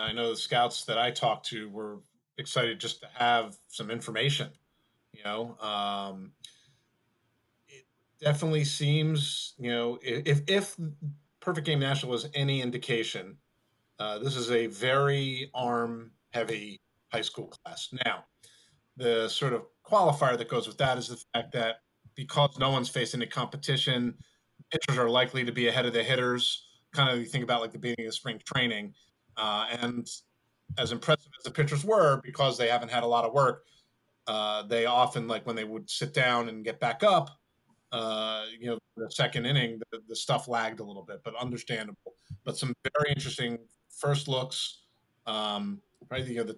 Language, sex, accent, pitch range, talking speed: English, male, American, 115-140 Hz, 175 wpm